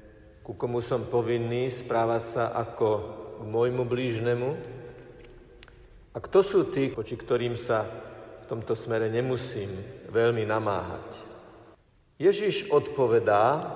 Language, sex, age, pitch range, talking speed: Slovak, male, 50-69, 115-150 Hz, 110 wpm